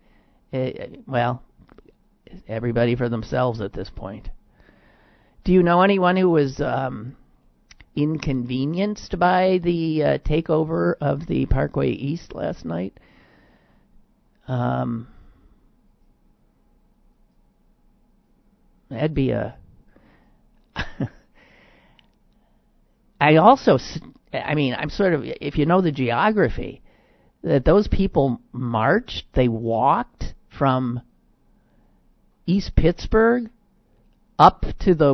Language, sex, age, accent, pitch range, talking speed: English, male, 50-69, American, 130-175 Hz, 90 wpm